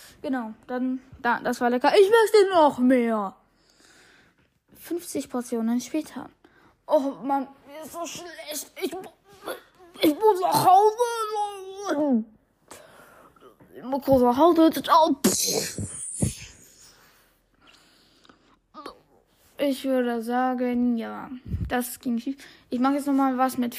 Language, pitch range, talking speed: German, 245-290 Hz, 105 wpm